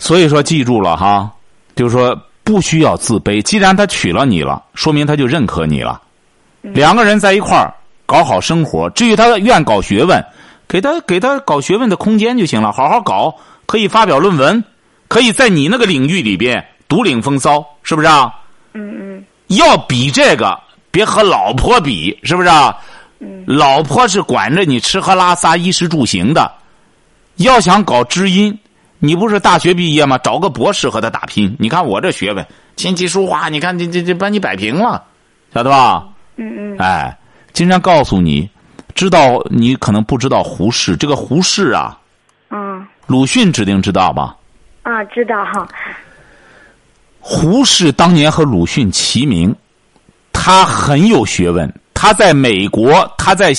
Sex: male